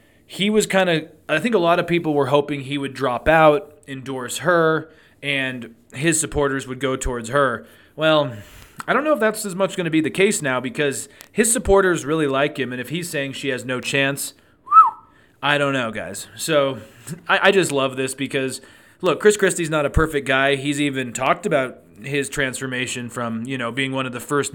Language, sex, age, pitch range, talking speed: English, male, 20-39, 125-160 Hz, 205 wpm